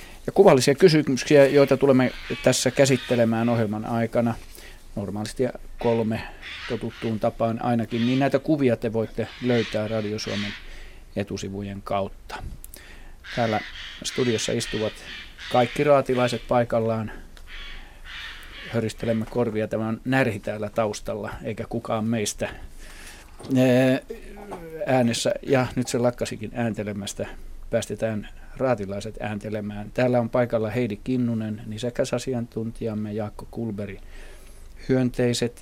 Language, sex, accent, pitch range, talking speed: Finnish, male, native, 105-125 Hz, 100 wpm